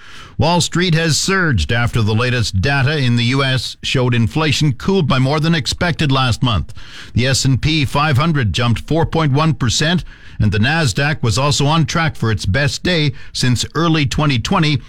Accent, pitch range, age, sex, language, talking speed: American, 115-155 Hz, 50-69, male, English, 155 wpm